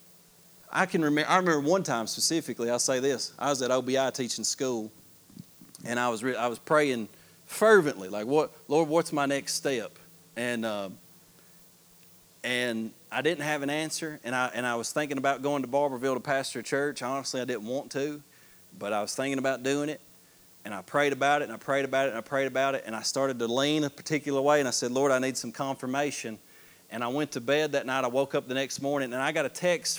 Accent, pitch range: American, 120-150 Hz